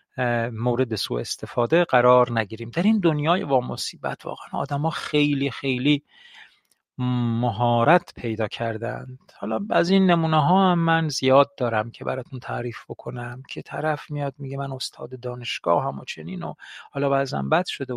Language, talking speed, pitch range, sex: Persian, 145 wpm, 125-170 Hz, male